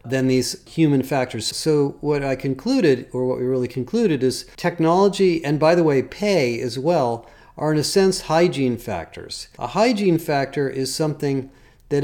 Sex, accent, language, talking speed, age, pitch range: male, American, English, 170 wpm, 40-59, 125-165 Hz